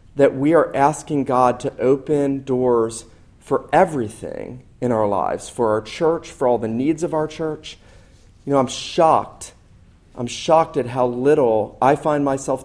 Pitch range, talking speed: 115-150 Hz, 165 wpm